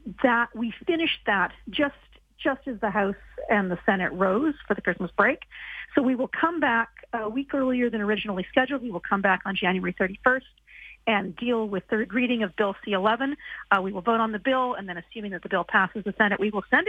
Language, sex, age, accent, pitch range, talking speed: English, female, 50-69, American, 205-260 Hz, 220 wpm